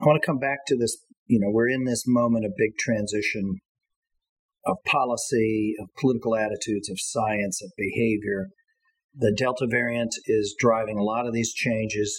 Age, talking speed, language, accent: 40-59, 170 wpm, English, American